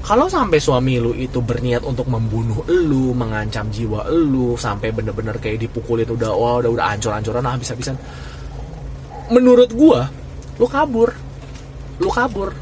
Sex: male